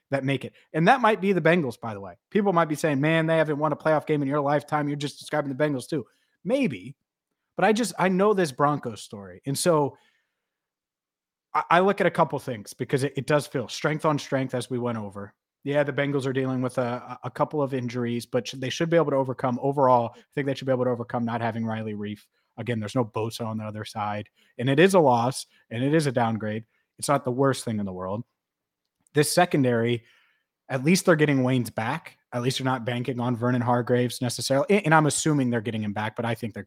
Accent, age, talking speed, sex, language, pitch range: American, 30-49, 235 wpm, male, English, 120-155 Hz